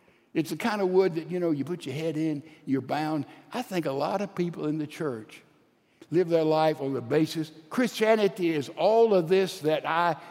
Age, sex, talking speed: 60-79, male, 215 wpm